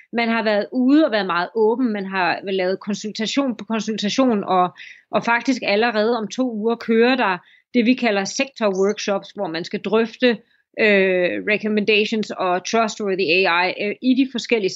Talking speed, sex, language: 165 wpm, female, Danish